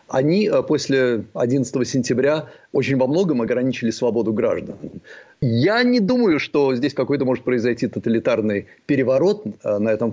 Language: Russian